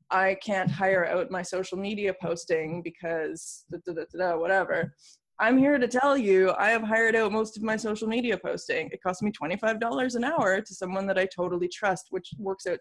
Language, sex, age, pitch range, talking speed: English, female, 20-39, 180-220 Hz, 185 wpm